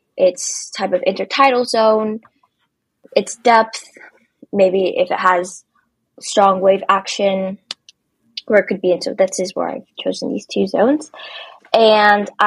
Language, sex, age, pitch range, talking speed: English, female, 10-29, 185-230 Hz, 140 wpm